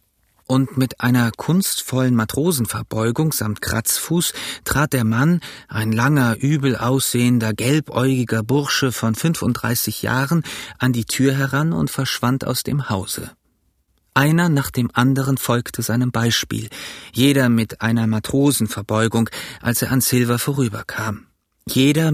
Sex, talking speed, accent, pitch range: male, 120 wpm, German, 110-135 Hz